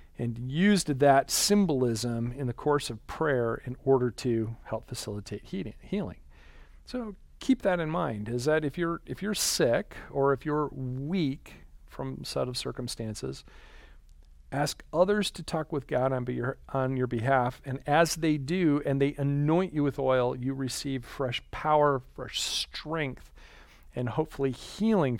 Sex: male